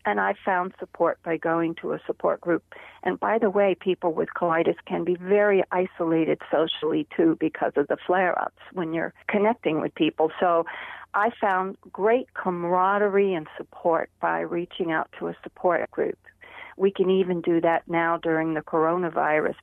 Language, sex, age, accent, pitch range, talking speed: English, female, 50-69, American, 165-205 Hz, 170 wpm